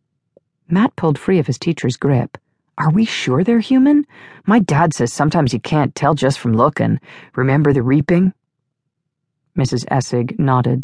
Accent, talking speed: American, 155 wpm